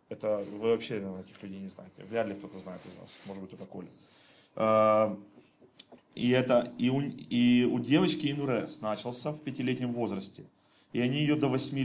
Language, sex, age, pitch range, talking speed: Russian, male, 30-49, 110-130 Hz, 170 wpm